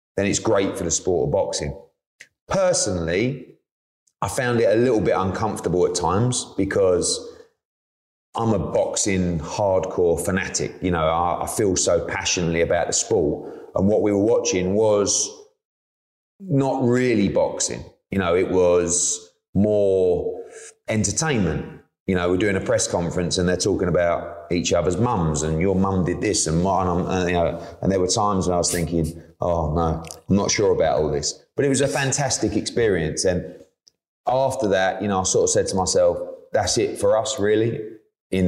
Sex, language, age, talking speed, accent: male, English, 30-49, 175 wpm, British